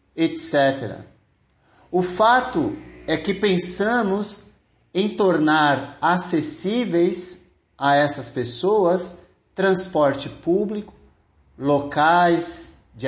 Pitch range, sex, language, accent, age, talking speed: 140-195 Hz, male, Portuguese, Brazilian, 50-69, 75 wpm